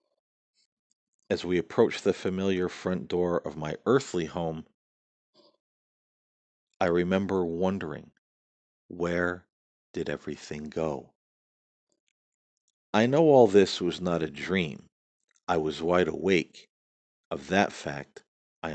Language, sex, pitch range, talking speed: English, male, 75-100 Hz, 110 wpm